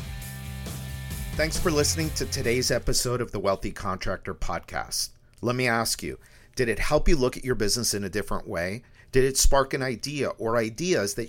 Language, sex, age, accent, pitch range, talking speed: English, male, 50-69, American, 100-135 Hz, 185 wpm